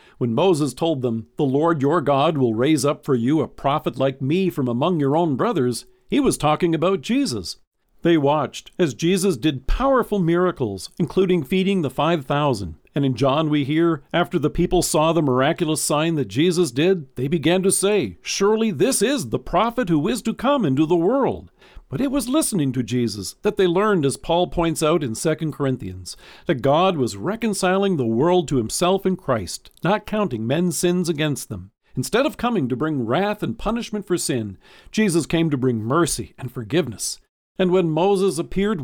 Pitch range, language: 135-185 Hz, English